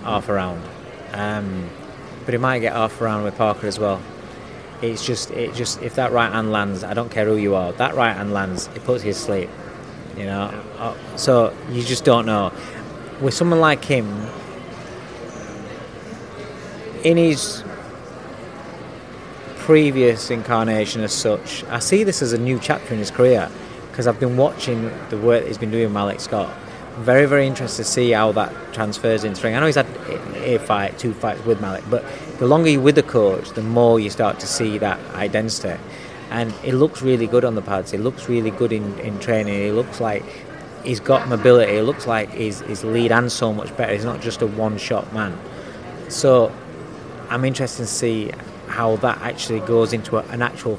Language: English